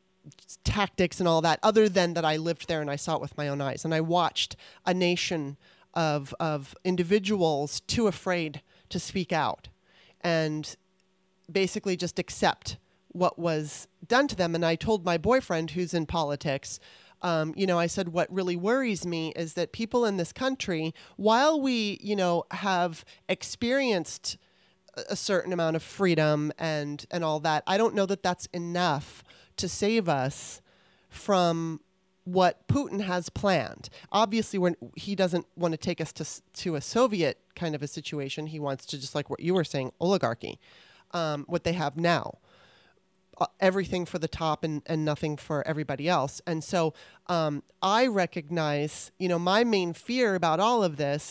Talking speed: 175 wpm